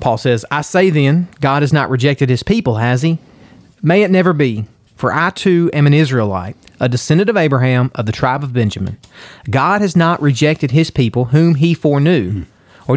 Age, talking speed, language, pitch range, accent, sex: 30-49, 195 wpm, English, 120-165 Hz, American, male